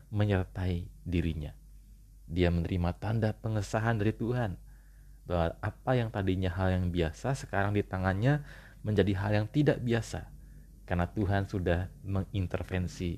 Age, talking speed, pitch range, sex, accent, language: 30-49, 125 wpm, 90-105 Hz, male, native, Indonesian